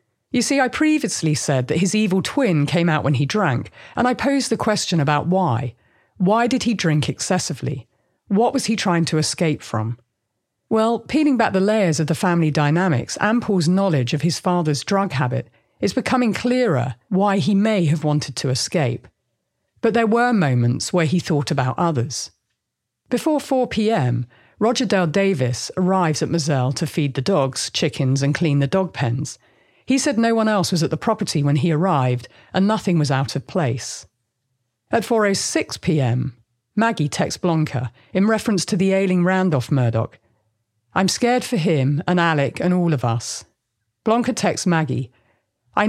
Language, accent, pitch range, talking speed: English, British, 130-200 Hz, 170 wpm